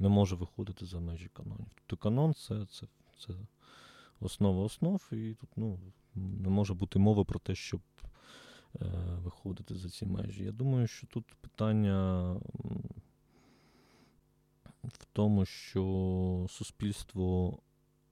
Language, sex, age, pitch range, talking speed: Ukrainian, male, 20-39, 90-110 Hz, 125 wpm